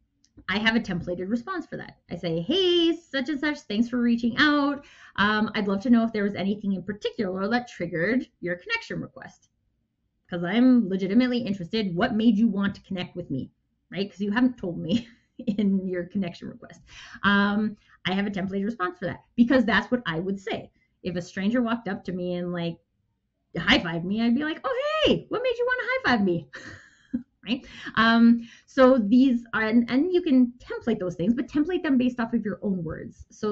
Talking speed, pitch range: 205 wpm, 185-245 Hz